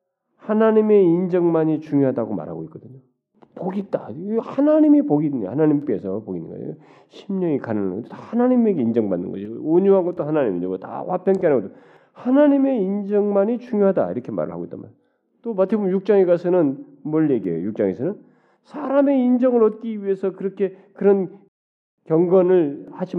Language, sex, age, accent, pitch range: Korean, male, 40-59, native, 150-230 Hz